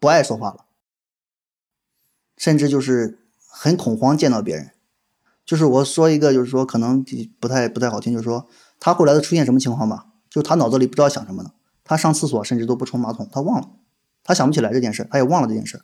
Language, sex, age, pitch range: Chinese, male, 20-39, 125-170 Hz